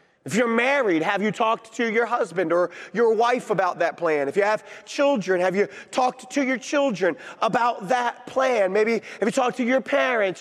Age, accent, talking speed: 30-49, American, 200 wpm